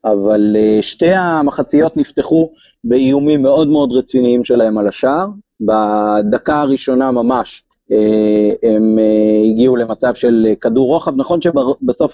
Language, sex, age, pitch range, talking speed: Hebrew, male, 30-49, 120-150 Hz, 110 wpm